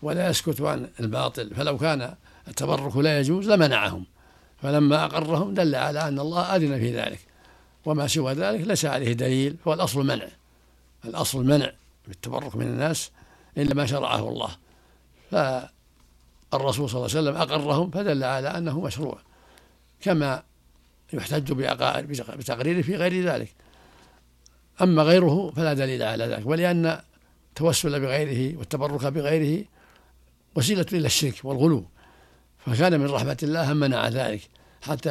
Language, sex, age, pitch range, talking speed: Arabic, male, 60-79, 115-155 Hz, 125 wpm